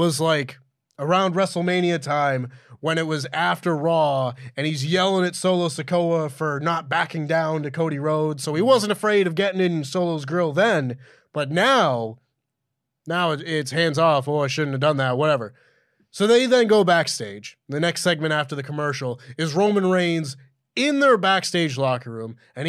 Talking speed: 175 wpm